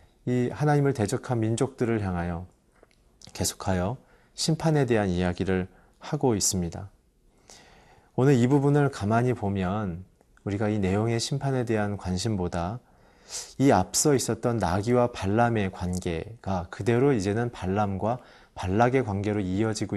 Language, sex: Korean, male